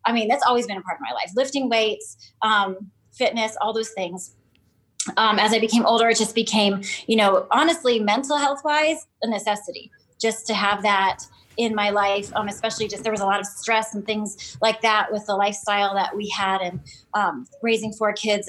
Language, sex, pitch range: English, female, 205-235 Hz